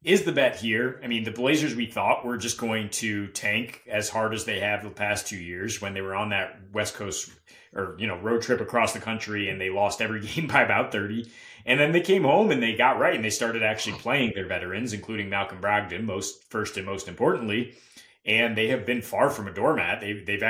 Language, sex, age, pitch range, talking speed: English, male, 30-49, 100-115 Hz, 235 wpm